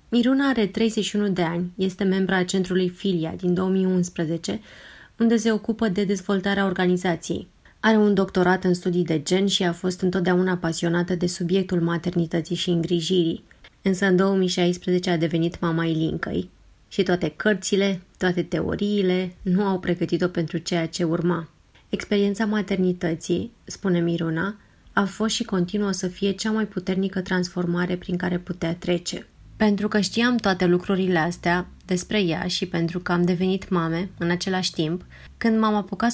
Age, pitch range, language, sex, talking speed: 20-39, 175-195 Hz, Romanian, female, 150 wpm